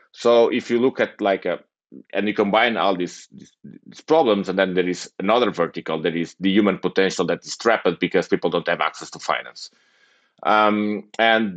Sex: male